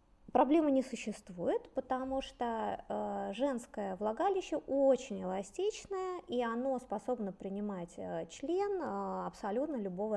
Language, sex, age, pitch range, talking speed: Russian, female, 20-39, 210-290 Hz, 95 wpm